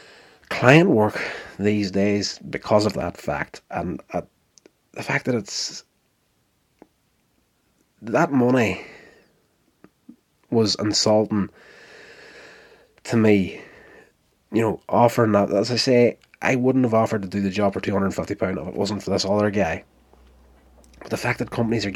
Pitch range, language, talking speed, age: 100-140 Hz, English, 140 wpm, 30-49